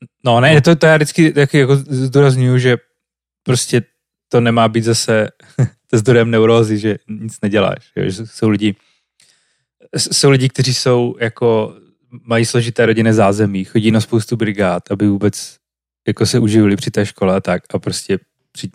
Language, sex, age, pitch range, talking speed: Slovak, male, 30-49, 110-140 Hz, 155 wpm